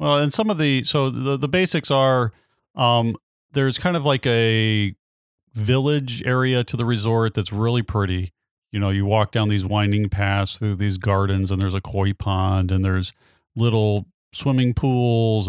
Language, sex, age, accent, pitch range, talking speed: English, male, 30-49, American, 100-120 Hz, 175 wpm